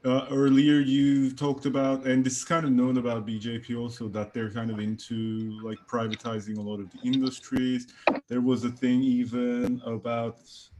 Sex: male